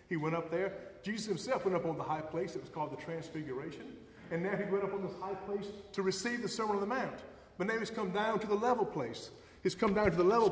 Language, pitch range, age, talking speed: English, 145-195 Hz, 30-49, 275 wpm